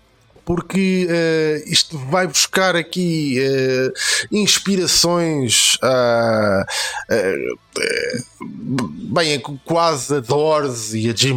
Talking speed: 100 wpm